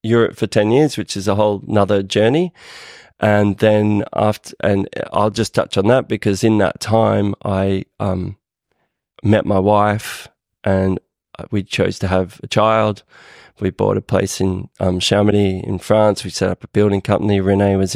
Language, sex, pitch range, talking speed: English, male, 100-110 Hz, 175 wpm